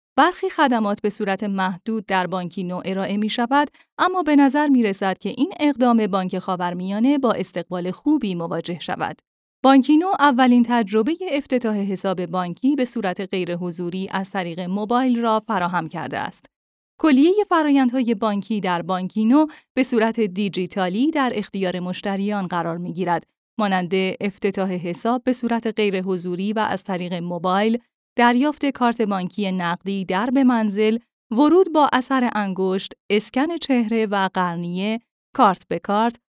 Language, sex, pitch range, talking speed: Persian, female, 185-255 Hz, 140 wpm